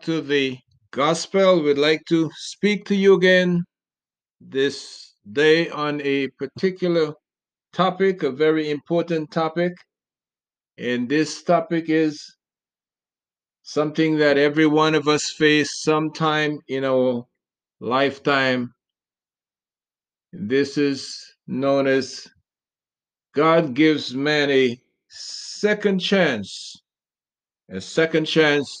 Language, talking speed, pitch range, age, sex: English, 100 wpm, 135-175 Hz, 50-69, male